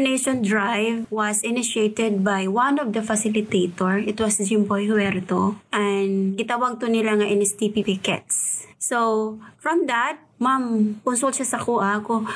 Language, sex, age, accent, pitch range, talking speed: Filipino, female, 20-39, native, 215-250 Hz, 145 wpm